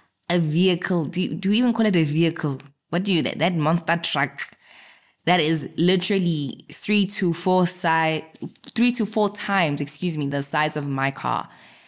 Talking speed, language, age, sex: 180 wpm, English, 20-39, female